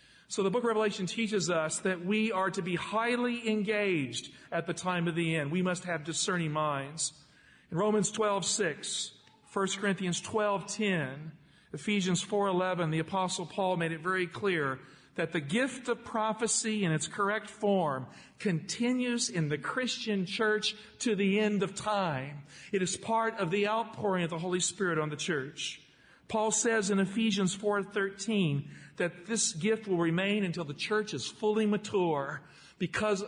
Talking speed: 160 wpm